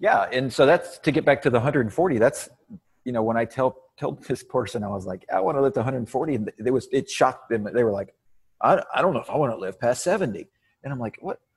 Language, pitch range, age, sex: English, 105-135 Hz, 30-49, male